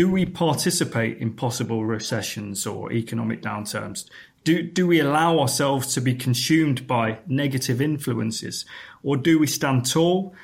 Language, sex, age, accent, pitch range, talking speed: English, male, 30-49, British, 125-160 Hz, 145 wpm